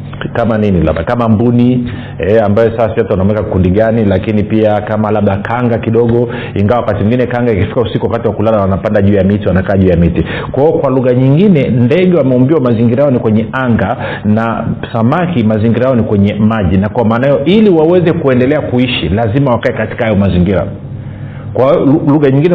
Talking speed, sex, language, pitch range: 175 wpm, male, Swahili, 110-140 Hz